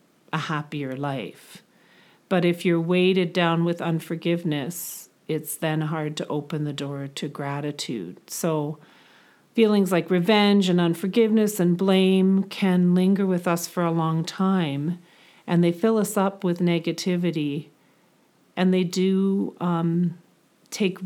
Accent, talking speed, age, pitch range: American, 135 wpm, 40-59, 165-190 Hz